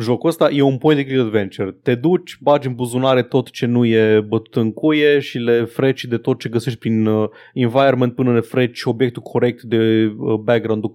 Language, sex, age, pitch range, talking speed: Romanian, male, 20-39, 110-140 Hz, 190 wpm